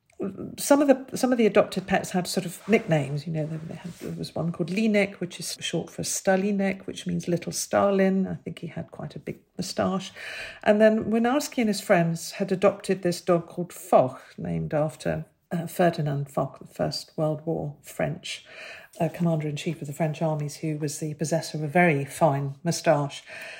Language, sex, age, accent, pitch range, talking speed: English, female, 50-69, British, 160-205 Hz, 190 wpm